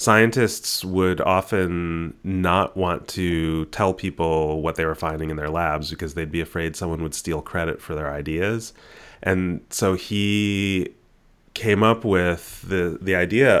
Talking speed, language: 155 wpm, English